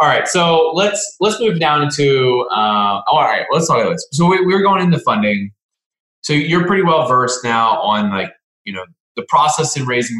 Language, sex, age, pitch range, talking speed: English, male, 20-39, 110-145 Hz, 205 wpm